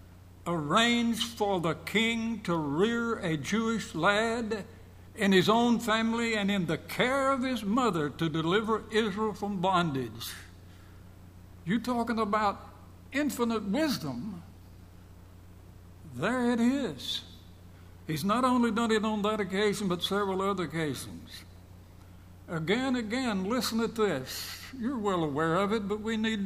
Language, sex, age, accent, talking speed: English, male, 60-79, American, 130 wpm